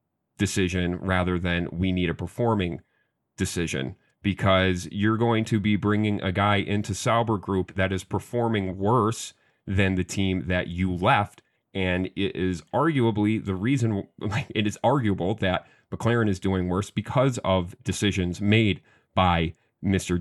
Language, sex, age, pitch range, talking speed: English, male, 30-49, 95-120 Hz, 145 wpm